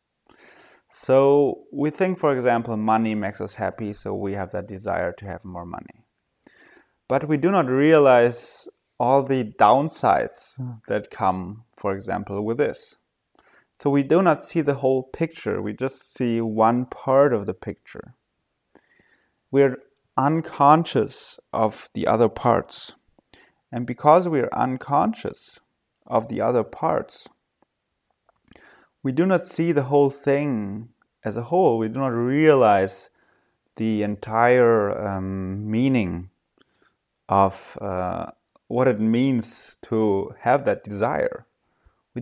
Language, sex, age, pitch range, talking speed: English, male, 30-49, 110-145 Hz, 130 wpm